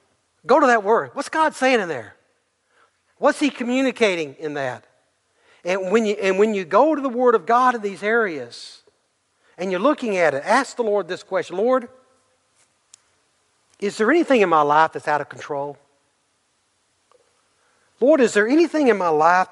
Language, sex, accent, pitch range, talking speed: English, male, American, 160-230 Hz, 175 wpm